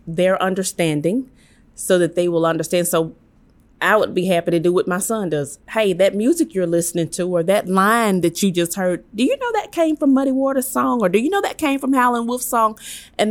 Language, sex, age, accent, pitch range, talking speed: English, female, 30-49, American, 155-215 Hz, 230 wpm